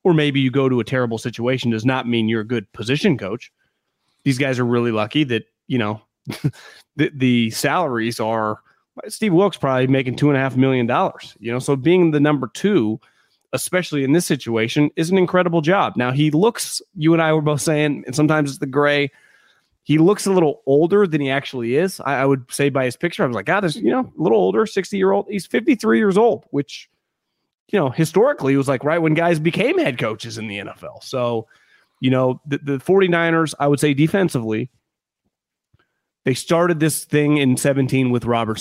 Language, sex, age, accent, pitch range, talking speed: English, male, 30-49, American, 120-155 Hz, 210 wpm